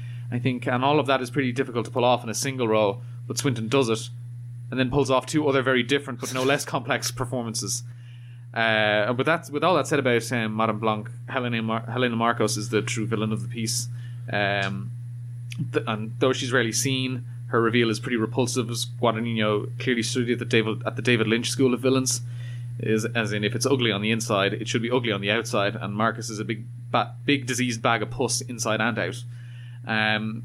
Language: English